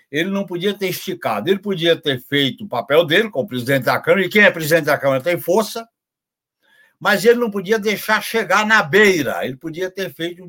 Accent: Brazilian